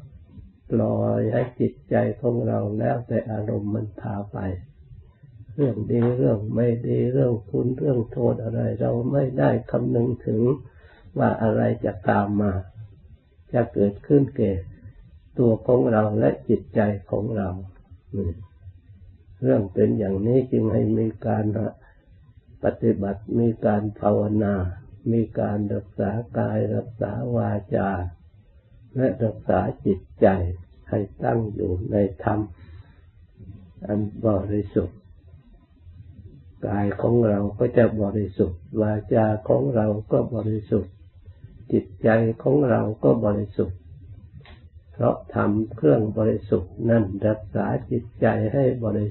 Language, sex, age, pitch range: Thai, male, 60-79, 95-115 Hz